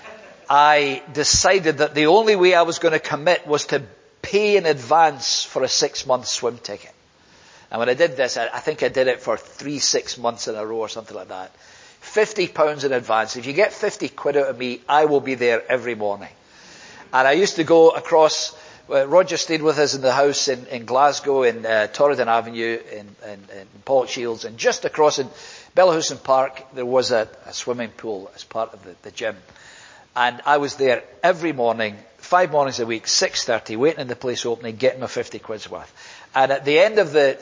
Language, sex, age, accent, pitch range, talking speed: English, male, 50-69, British, 130-185 Hz, 210 wpm